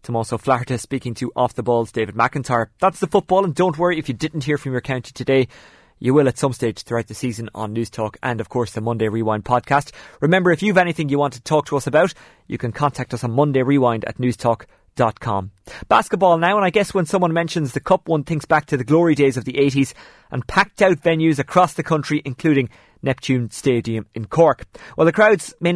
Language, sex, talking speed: English, male, 220 wpm